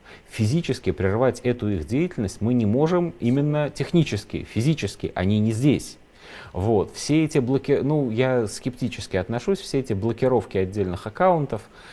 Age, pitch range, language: 30-49, 95-140 Hz, Russian